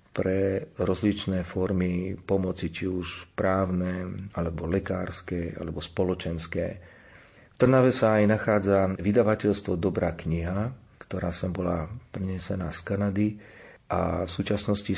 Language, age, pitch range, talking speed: Slovak, 40-59, 90-100 Hz, 110 wpm